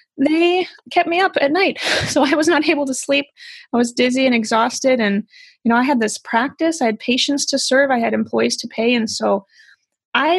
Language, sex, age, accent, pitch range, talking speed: English, female, 20-39, American, 220-280 Hz, 220 wpm